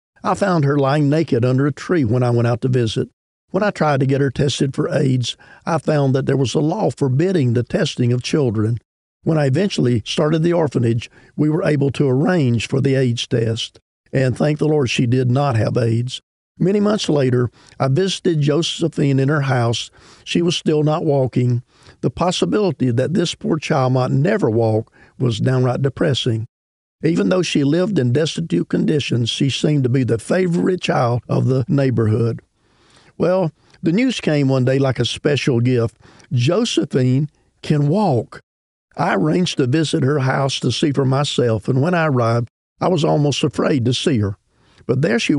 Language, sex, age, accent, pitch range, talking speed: English, male, 50-69, American, 125-155 Hz, 185 wpm